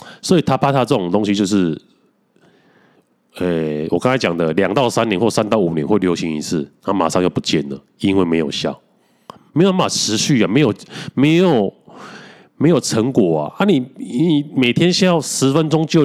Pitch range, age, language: 95-140 Hz, 30-49, Chinese